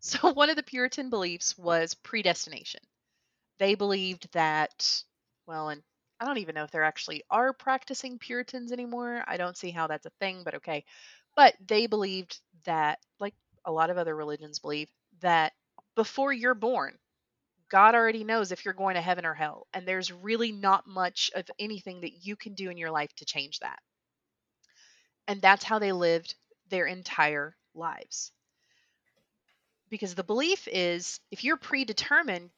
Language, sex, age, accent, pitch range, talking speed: English, female, 30-49, American, 170-240 Hz, 165 wpm